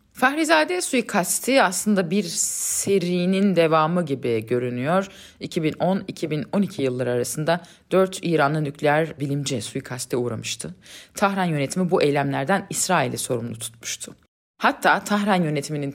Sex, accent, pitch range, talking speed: female, native, 145-205 Hz, 100 wpm